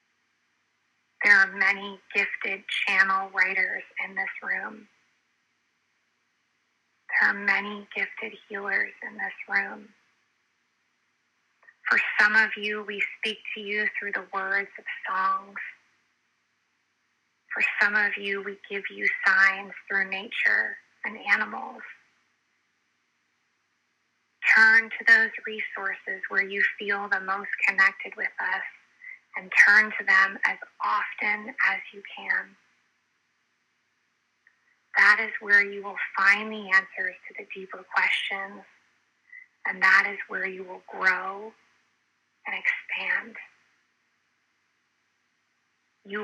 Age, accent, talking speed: 30-49, American, 110 wpm